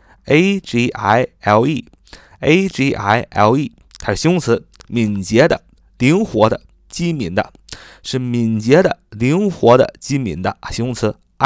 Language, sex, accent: Chinese, male, native